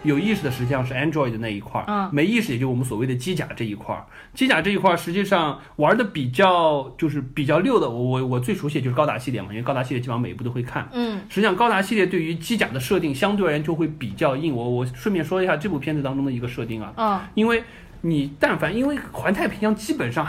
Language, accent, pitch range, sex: Chinese, native, 130-190 Hz, male